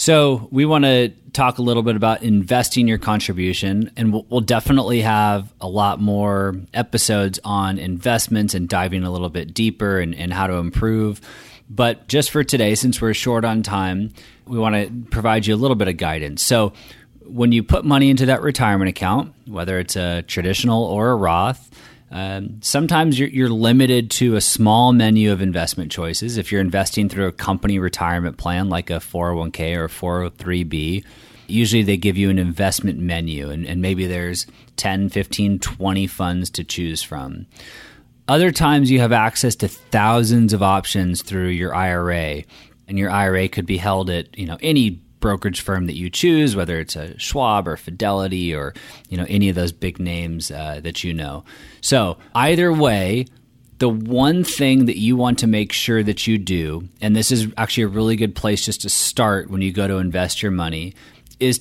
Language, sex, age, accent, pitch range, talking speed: English, male, 30-49, American, 90-120 Hz, 185 wpm